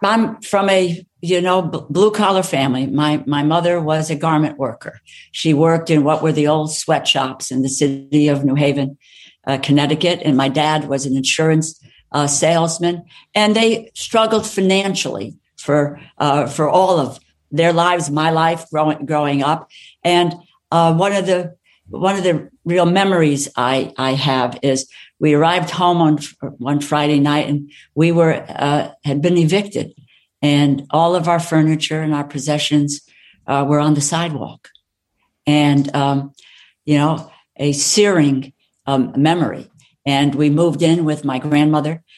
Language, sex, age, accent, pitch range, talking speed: English, female, 60-79, American, 140-165 Hz, 160 wpm